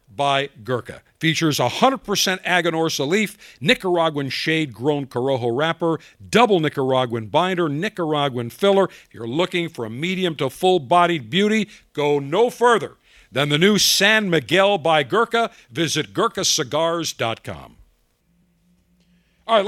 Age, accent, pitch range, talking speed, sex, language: 50-69, American, 125-175 Hz, 115 wpm, male, English